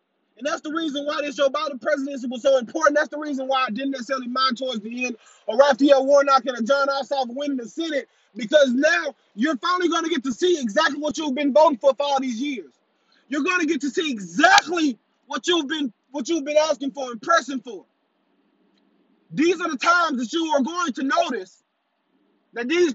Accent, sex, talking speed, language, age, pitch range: American, male, 215 wpm, English, 30-49, 265-315 Hz